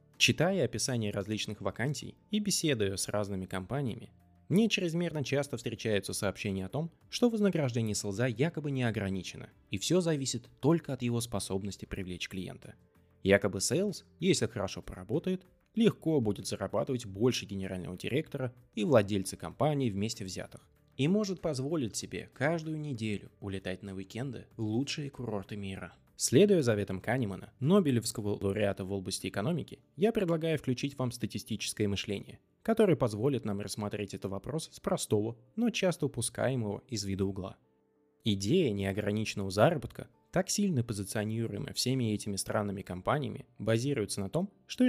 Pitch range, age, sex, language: 100-145 Hz, 20-39, male, Russian